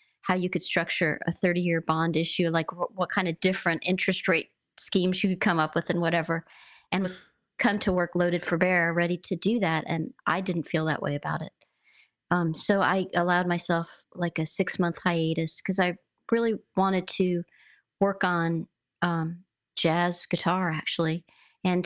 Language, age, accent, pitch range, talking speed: English, 40-59, American, 170-195 Hz, 175 wpm